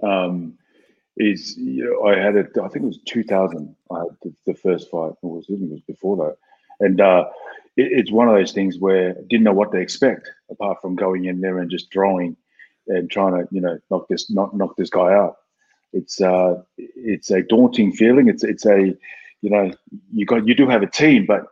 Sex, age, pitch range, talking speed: male, 30-49, 90-105 Hz, 225 wpm